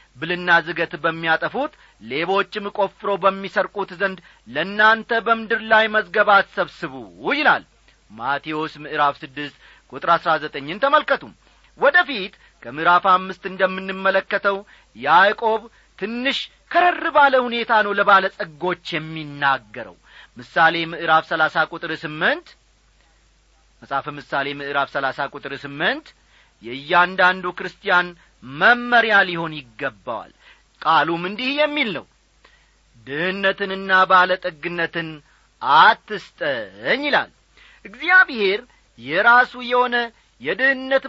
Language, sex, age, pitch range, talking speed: Amharic, male, 40-59, 165-225 Hz, 90 wpm